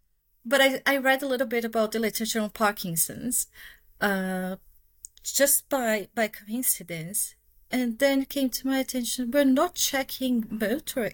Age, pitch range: 30-49, 190-250 Hz